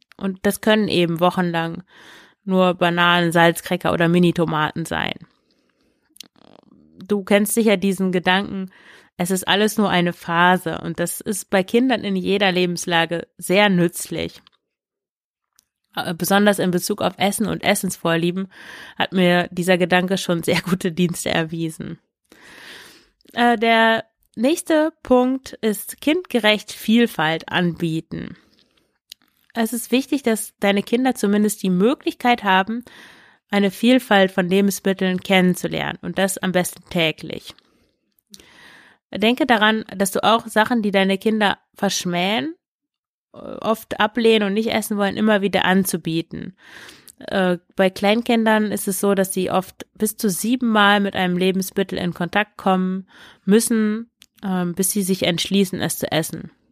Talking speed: 125 wpm